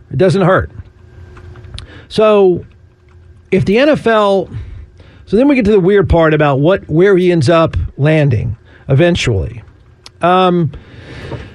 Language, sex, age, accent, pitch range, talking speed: English, male, 50-69, American, 115-195 Hz, 125 wpm